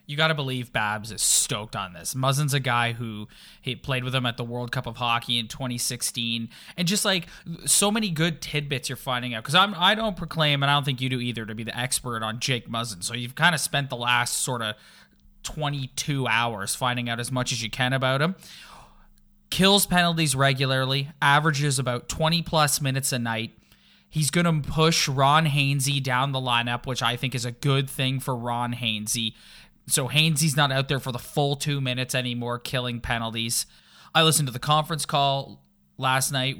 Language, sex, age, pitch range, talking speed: English, male, 20-39, 120-150 Hz, 200 wpm